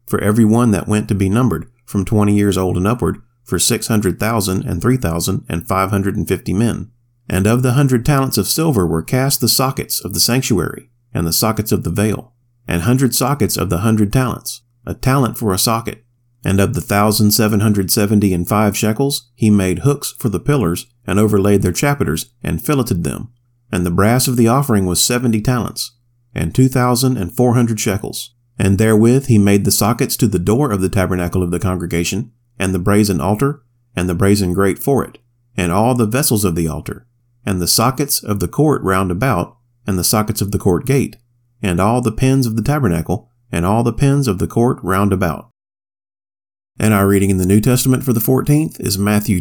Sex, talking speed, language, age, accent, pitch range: male, 210 wpm, English, 40-59, American, 100-120 Hz